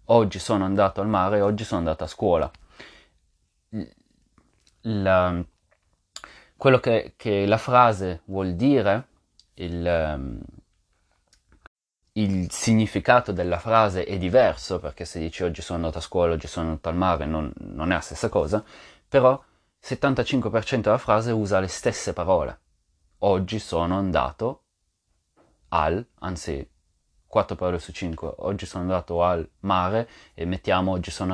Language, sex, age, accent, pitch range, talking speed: English, male, 30-49, Italian, 85-120 Hz, 135 wpm